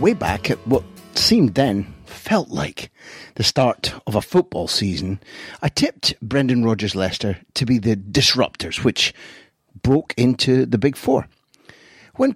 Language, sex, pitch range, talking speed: English, male, 100-130 Hz, 145 wpm